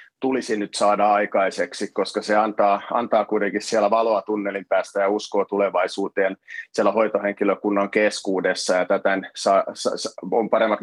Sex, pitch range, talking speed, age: male, 100-110 Hz, 125 wpm, 30-49